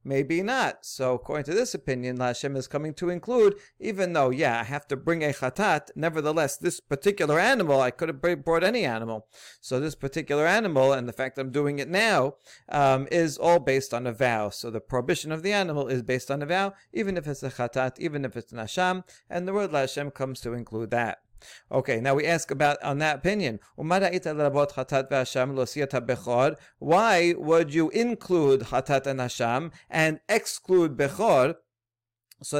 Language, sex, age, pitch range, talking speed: English, male, 40-59, 130-175 Hz, 175 wpm